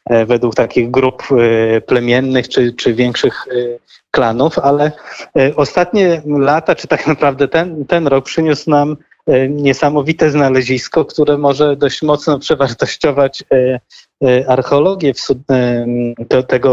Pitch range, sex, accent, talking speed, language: 125-150 Hz, male, native, 100 wpm, Polish